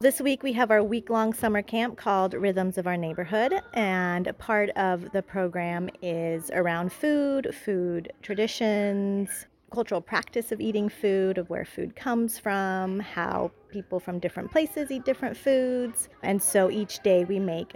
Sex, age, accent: female, 30-49, American